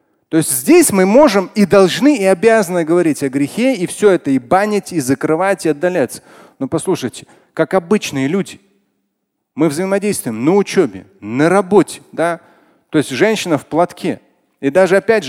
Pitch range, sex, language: 160-220 Hz, male, Russian